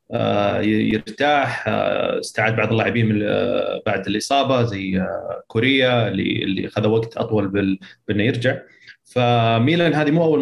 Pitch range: 110-125 Hz